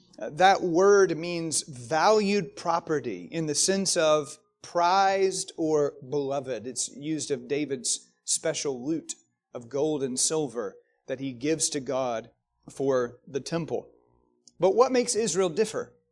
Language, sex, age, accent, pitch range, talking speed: English, male, 30-49, American, 135-195 Hz, 130 wpm